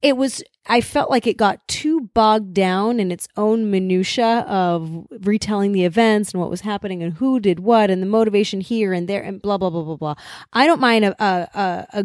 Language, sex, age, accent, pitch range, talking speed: English, female, 30-49, American, 175-235 Hz, 220 wpm